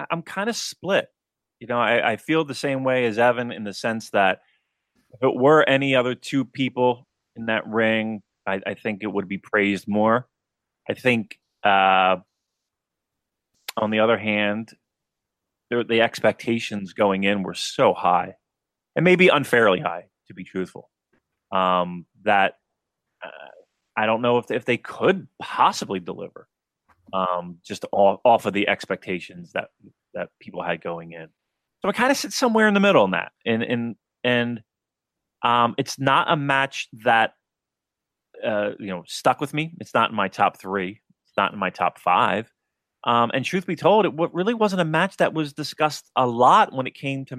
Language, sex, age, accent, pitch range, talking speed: English, male, 30-49, American, 105-145 Hz, 180 wpm